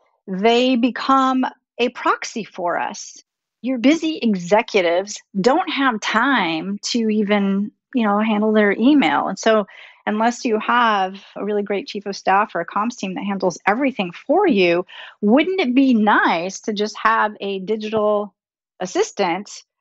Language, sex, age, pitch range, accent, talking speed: English, female, 40-59, 180-230 Hz, American, 150 wpm